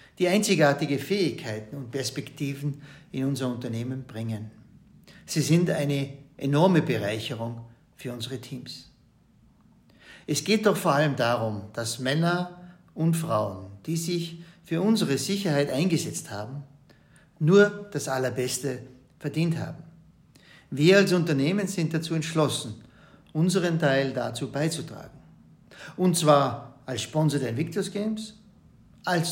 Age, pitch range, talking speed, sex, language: 60-79, 130-165 Hz, 115 wpm, male, German